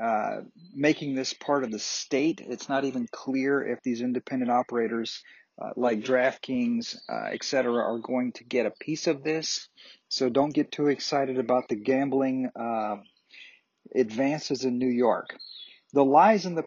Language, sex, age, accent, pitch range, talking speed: English, male, 50-69, American, 125-145 Hz, 160 wpm